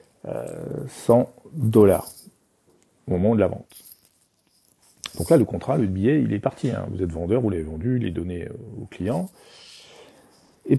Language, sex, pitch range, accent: French, male, 100-125 Hz, French